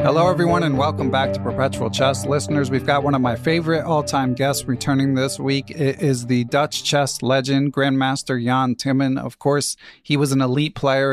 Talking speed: 195 wpm